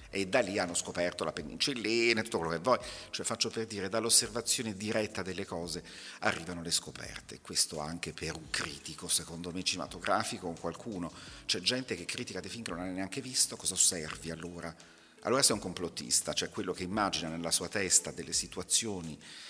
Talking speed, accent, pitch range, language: 185 wpm, native, 85-110 Hz, Italian